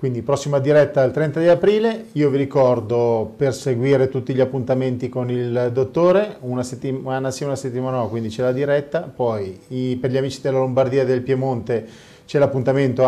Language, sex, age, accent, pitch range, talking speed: Italian, male, 40-59, native, 115-135 Hz, 180 wpm